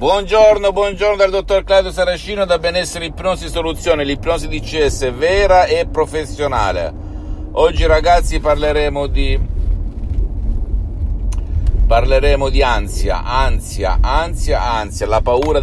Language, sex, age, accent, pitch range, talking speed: Italian, male, 50-69, native, 85-110 Hz, 105 wpm